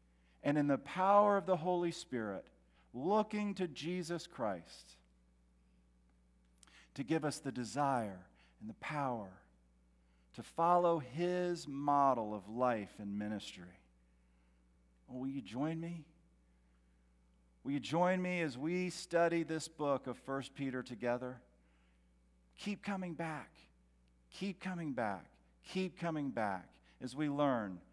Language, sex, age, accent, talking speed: English, male, 50-69, American, 120 wpm